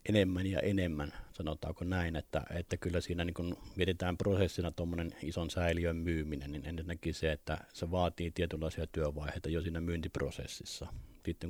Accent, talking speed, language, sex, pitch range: native, 145 wpm, Finnish, male, 75-85 Hz